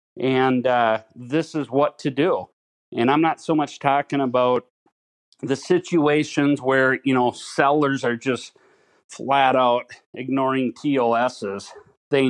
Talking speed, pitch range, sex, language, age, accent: 130 wpm, 120-140 Hz, male, English, 40-59, American